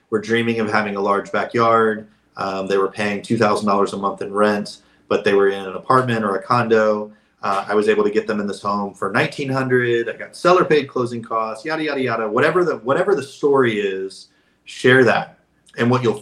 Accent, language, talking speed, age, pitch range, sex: American, English, 210 wpm, 30-49, 100-120 Hz, male